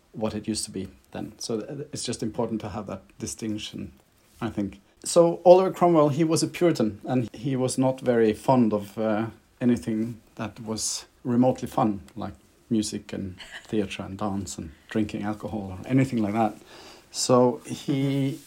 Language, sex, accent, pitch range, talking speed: English, male, Norwegian, 105-130 Hz, 165 wpm